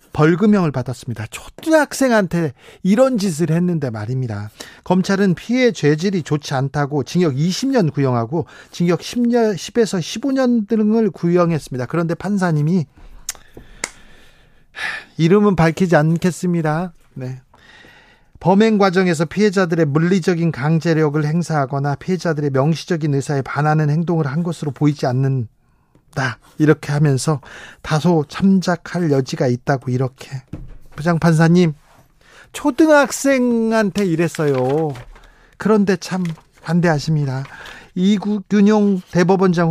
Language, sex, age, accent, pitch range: Korean, male, 40-59, native, 145-185 Hz